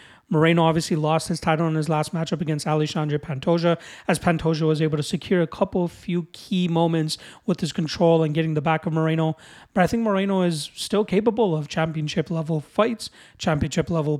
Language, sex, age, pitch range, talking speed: English, male, 30-49, 160-180 Hz, 185 wpm